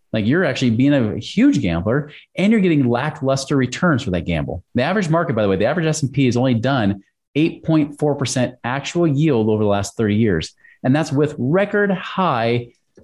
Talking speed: 185 wpm